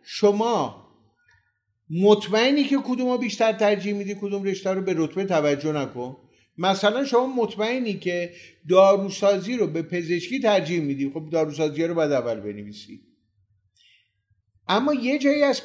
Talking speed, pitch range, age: 130 wpm, 155-220 Hz, 50-69